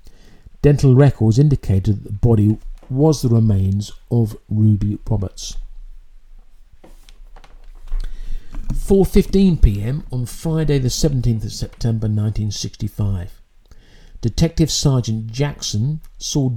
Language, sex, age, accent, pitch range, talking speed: English, male, 50-69, British, 105-145 Hz, 100 wpm